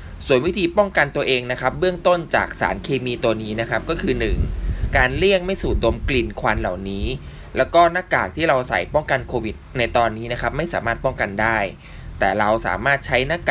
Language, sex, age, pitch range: Thai, male, 20-39, 105-145 Hz